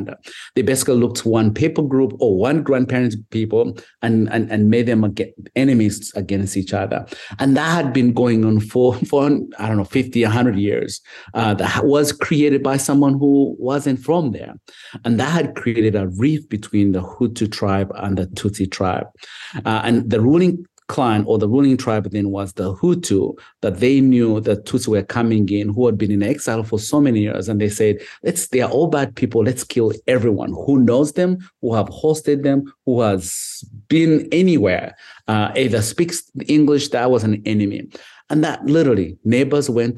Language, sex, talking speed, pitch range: English, male, 185 wpm, 105-140 Hz